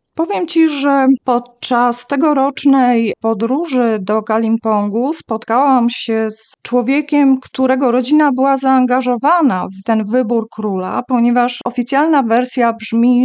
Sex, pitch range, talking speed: female, 215-265 Hz, 110 wpm